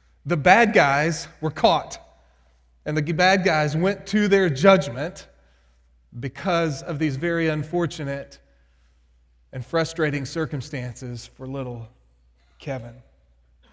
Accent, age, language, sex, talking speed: American, 30-49, English, male, 105 wpm